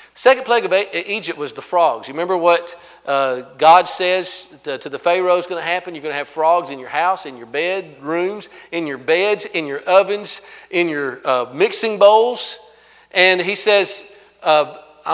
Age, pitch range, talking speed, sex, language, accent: 40-59, 155-215 Hz, 185 wpm, male, English, American